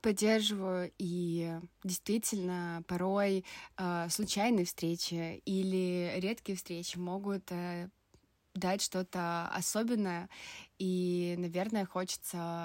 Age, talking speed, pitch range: 20-39, 75 wpm, 180-210 Hz